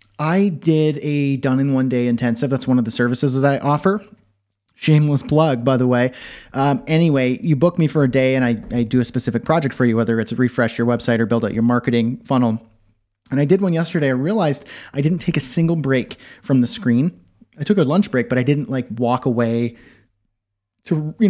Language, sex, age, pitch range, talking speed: English, male, 30-49, 120-150 Hz, 220 wpm